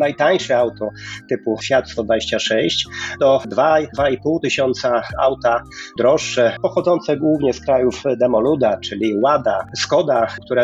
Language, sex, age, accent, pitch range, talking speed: Polish, male, 30-49, native, 120-150 Hz, 115 wpm